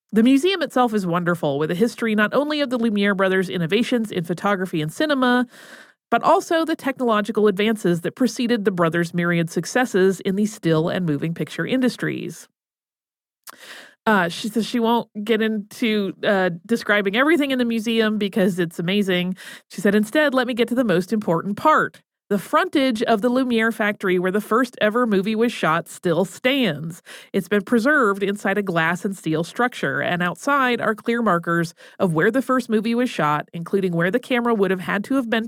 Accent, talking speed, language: American, 185 wpm, English